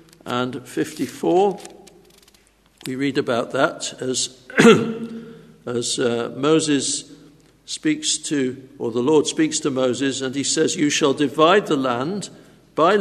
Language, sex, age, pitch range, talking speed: English, male, 60-79, 135-170 Hz, 125 wpm